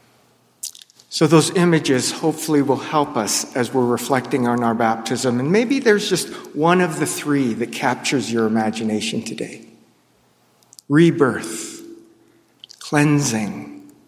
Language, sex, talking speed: English, male, 120 wpm